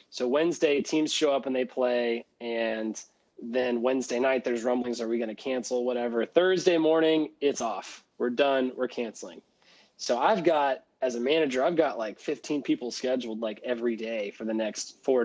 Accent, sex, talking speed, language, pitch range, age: American, male, 185 wpm, English, 120-150 Hz, 20-39